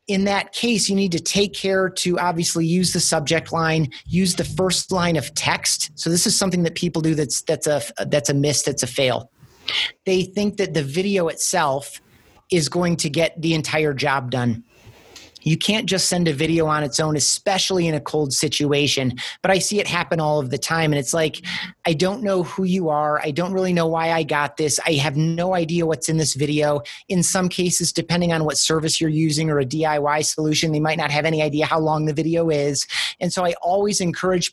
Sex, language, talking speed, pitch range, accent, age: male, English, 220 wpm, 150-175 Hz, American, 30-49